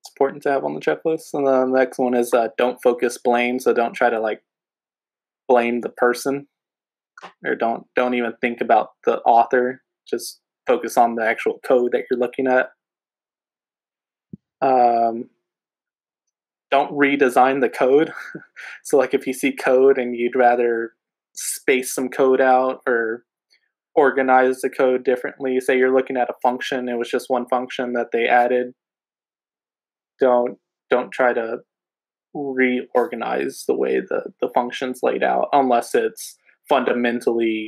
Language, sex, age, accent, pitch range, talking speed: English, male, 20-39, American, 120-130 Hz, 150 wpm